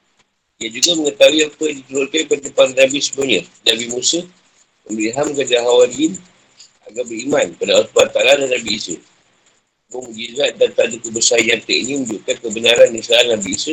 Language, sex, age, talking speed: Malay, male, 50-69, 155 wpm